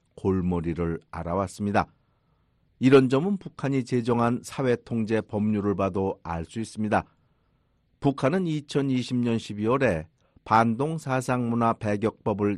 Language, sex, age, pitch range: Korean, male, 50-69, 105-130 Hz